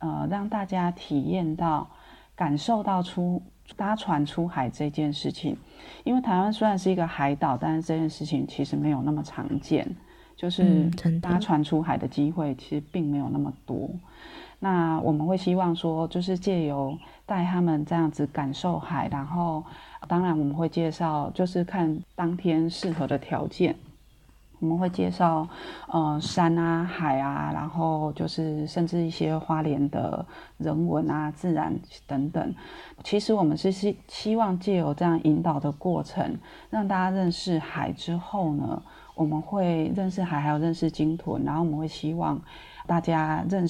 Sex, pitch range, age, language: female, 150-180 Hz, 30-49, Chinese